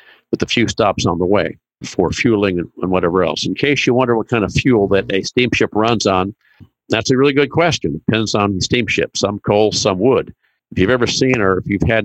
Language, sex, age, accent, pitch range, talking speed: English, male, 50-69, American, 95-120 Hz, 235 wpm